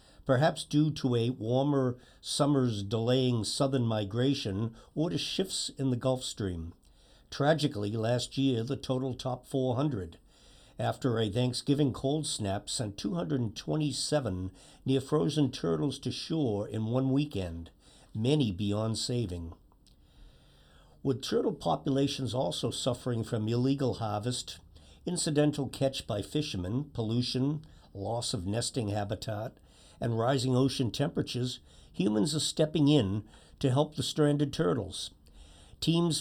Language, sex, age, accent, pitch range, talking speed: English, male, 60-79, American, 105-145 Hz, 120 wpm